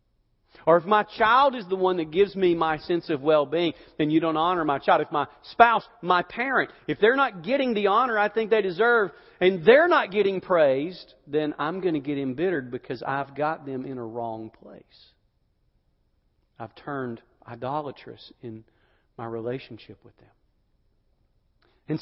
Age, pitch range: 40-59, 115-155 Hz